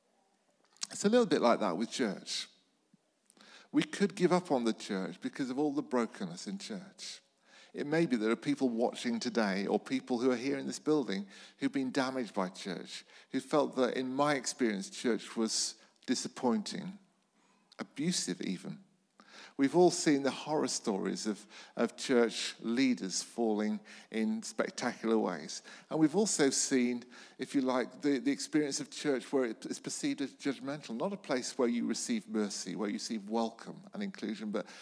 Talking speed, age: 170 wpm, 50-69